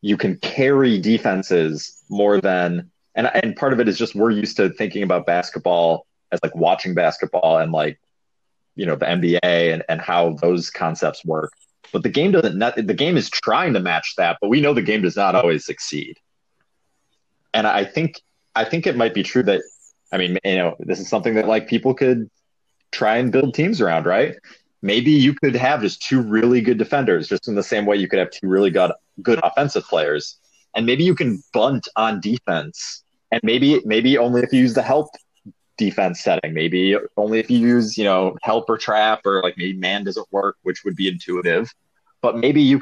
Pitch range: 90-125 Hz